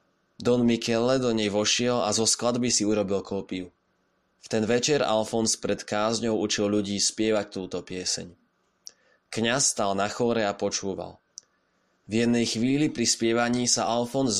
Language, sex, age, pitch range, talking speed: Slovak, male, 20-39, 100-120 Hz, 145 wpm